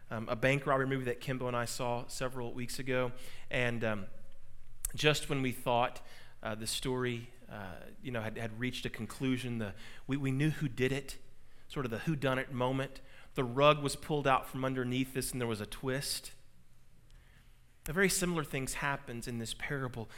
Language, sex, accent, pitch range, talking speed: English, male, American, 115-150 Hz, 195 wpm